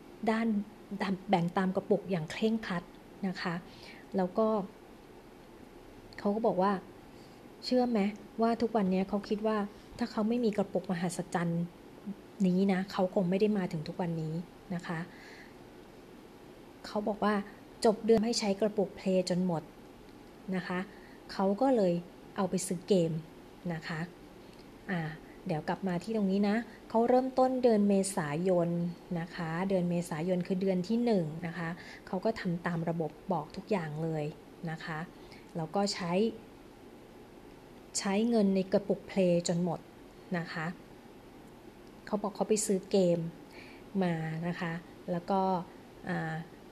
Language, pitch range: Thai, 175-210 Hz